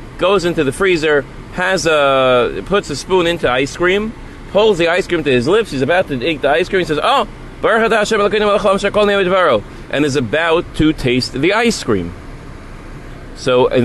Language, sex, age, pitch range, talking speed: English, male, 30-49, 120-165 Hz, 175 wpm